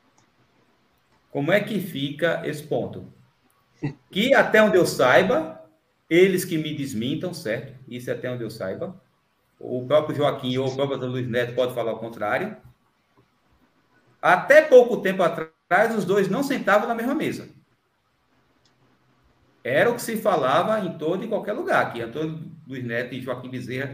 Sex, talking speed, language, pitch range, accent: male, 155 wpm, Portuguese, 125-180 Hz, Brazilian